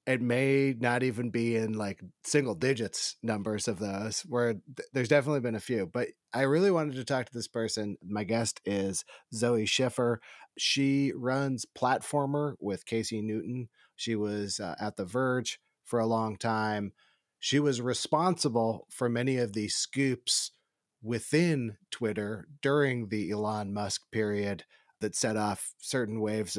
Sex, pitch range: male, 105-125 Hz